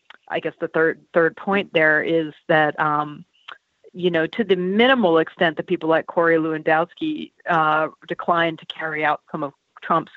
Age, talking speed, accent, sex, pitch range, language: 40-59, 170 wpm, American, female, 155-205 Hz, English